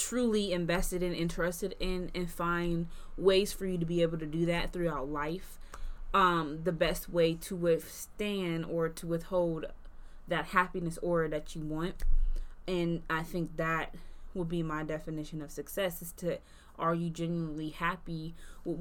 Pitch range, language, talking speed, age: 155-175 Hz, English, 160 wpm, 20-39